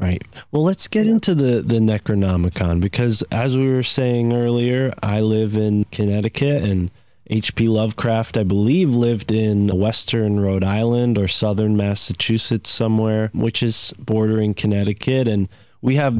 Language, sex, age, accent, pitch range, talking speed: English, male, 20-39, American, 100-120 Hz, 145 wpm